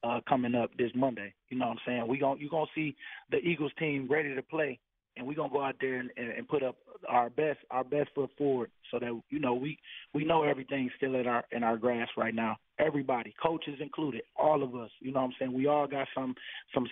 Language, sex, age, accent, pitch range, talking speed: English, male, 20-39, American, 125-145 Hz, 250 wpm